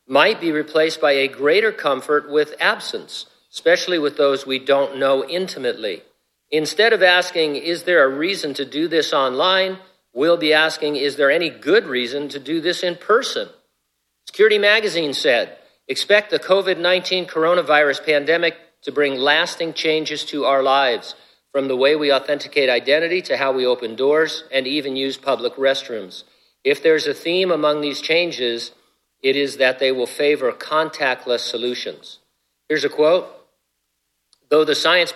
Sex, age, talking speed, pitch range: male, 50-69, 155 wpm, 130-160 Hz